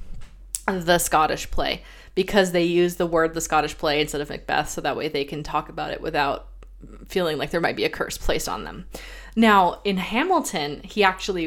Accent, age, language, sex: American, 20-39, English, female